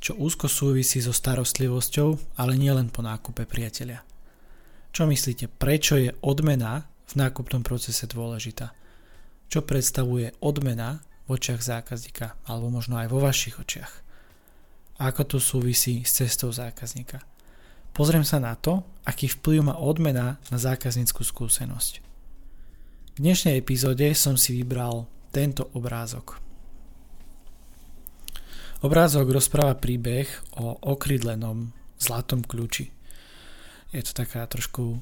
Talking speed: 115 wpm